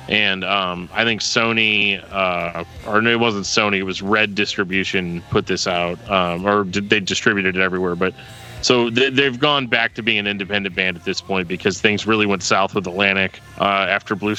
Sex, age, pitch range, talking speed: male, 30-49, 95-115 Hz, 205 wpm